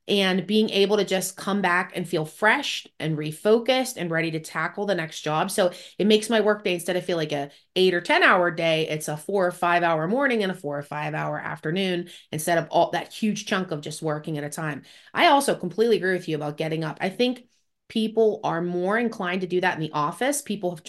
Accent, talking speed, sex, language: American, 240 wpm, female, English